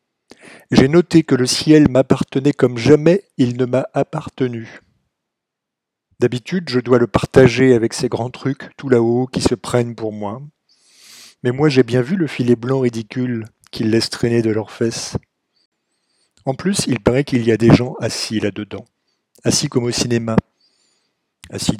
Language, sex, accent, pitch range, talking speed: French, male, French, 115-140 Hz, 160 wpm